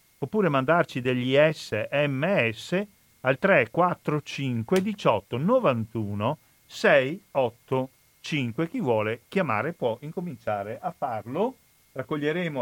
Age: 50-69